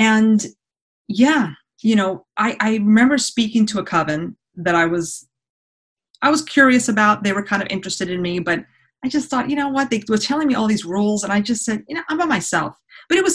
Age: 30-49